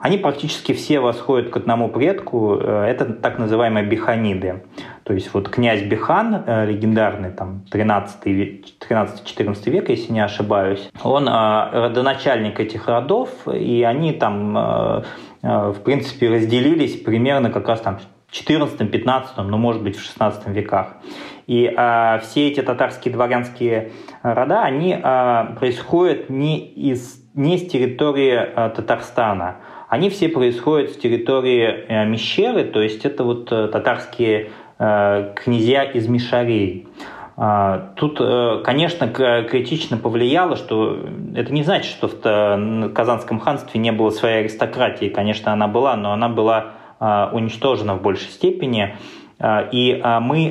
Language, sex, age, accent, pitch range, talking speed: Russian, male, 20-39, native, 105-130 Hz, 120 wpm